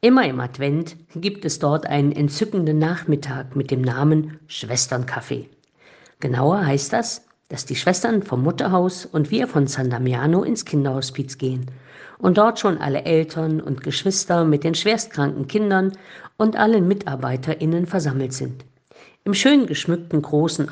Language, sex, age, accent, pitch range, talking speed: German, female, 50-69, German, 140-180 Hz, 140 wpm